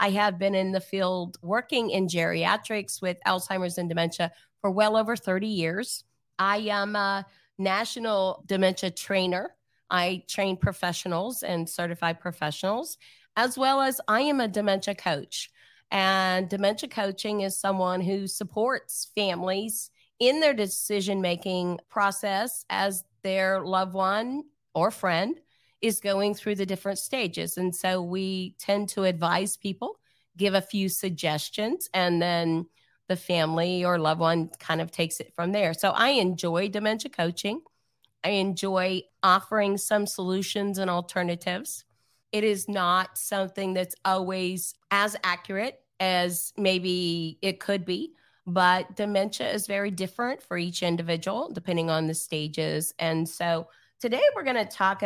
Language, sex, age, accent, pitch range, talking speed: English, female, 40-59, American, 175-205 Hz, 140 wpm